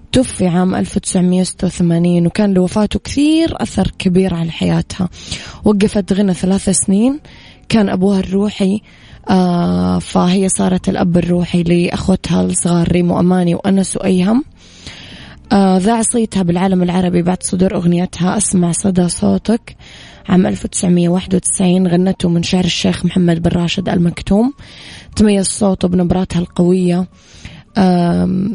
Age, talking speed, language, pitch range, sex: 20-39, 110 wpm, Arabic, 175-195 Hz, female